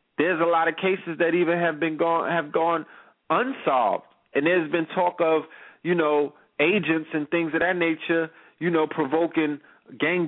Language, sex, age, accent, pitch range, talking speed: English, male, 30-49, American, 150-190 Hz, 175 wpm